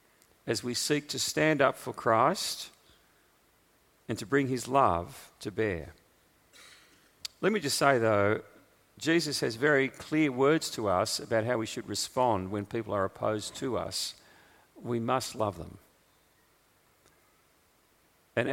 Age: 40-59